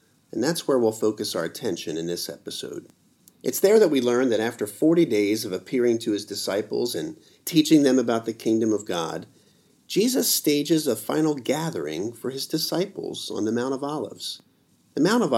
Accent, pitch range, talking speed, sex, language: American, 110-150 Hz, 185 wpm, male, English